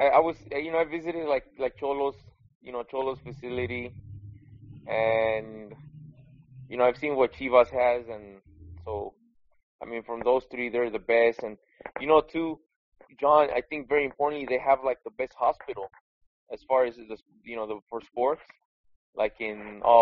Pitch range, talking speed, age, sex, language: 110-135 Hz, 175 wpm, 20-39, male, English